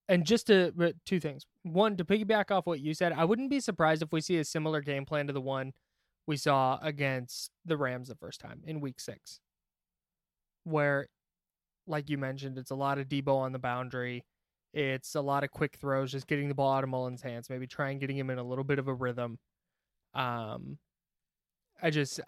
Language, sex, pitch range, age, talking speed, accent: English, male, 135-165 Hz, 20-39, 205 wpm, American